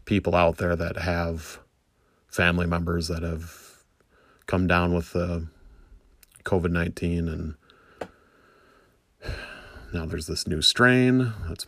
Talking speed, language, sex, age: 110 wpm, English, male, 30-49